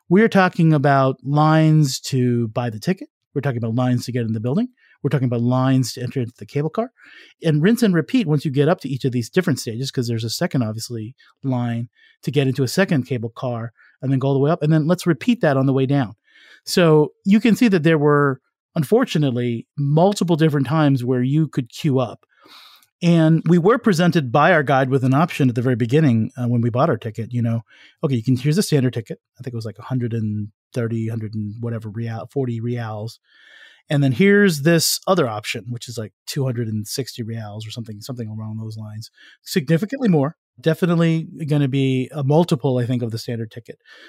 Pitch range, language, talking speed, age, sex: 120-160 Hz, English, 215 wpm, 40-59, male